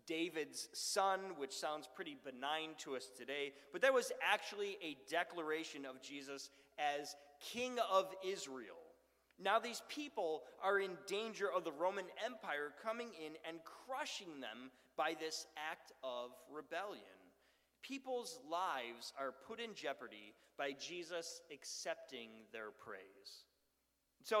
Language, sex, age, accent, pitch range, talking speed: English, male, 30-49, American, 150-200 Hz, 130 wpm